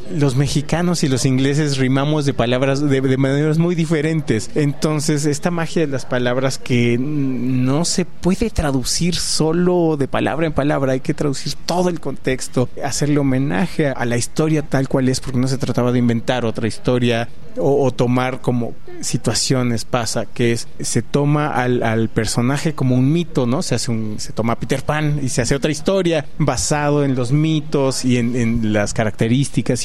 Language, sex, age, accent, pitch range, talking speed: Spanish, male, 30-49, Mexican, 125-155 Hz, 180 wpm